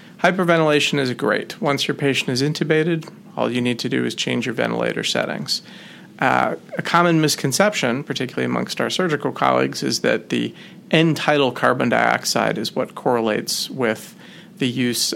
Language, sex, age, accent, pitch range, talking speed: English, male, 40-59, American, 120-165 Hz, 160 wpm